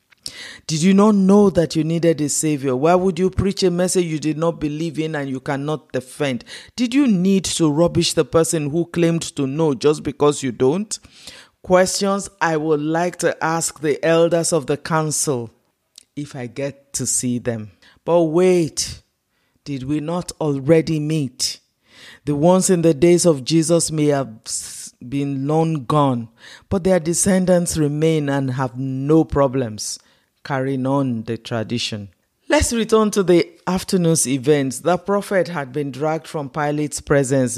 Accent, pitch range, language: Nigerian, 135-170 Hz, English